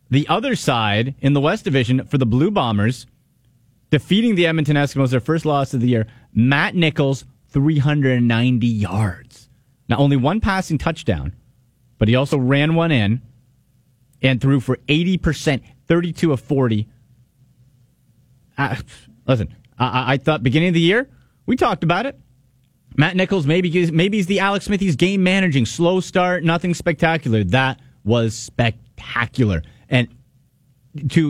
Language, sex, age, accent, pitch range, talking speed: English, male, 30-49, American, 120-150 Hz, 145 wpm